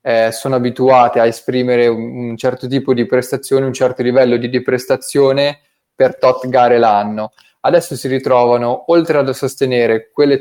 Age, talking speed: 20-39, 160 wpm